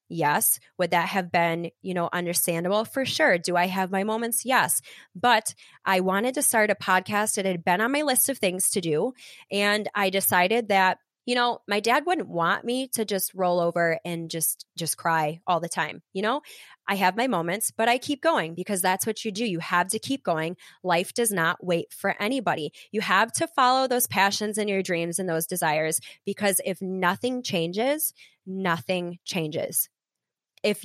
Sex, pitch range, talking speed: female, 180-230 Hz, 195 wpm